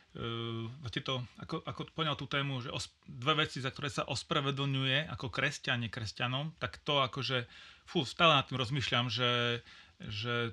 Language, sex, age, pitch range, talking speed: Slovak, male, 30-49, 125-145 Hz, 160 wpm